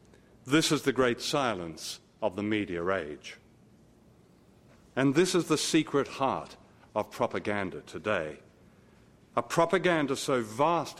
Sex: male